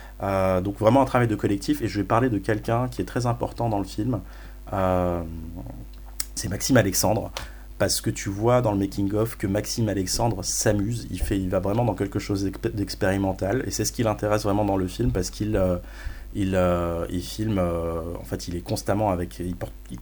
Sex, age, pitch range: male, 30-49, 90-105 Hz